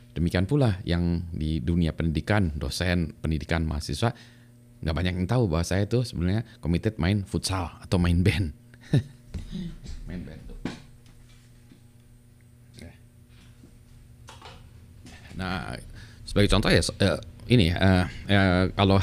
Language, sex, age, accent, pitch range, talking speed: Indonesian, male, 30-49, native, 90-120 Hz, 105 wpm